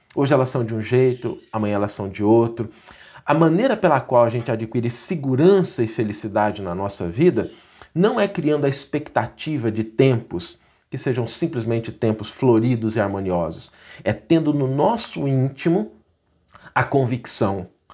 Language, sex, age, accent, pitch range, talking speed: Portuguese, male, 50-69, Brazilian, 105-145 Hz, 150 wpm